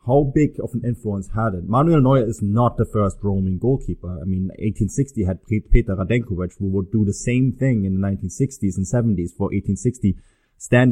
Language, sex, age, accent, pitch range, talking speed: English, male, 30-49, German, 100-130 Hz, 190 wpm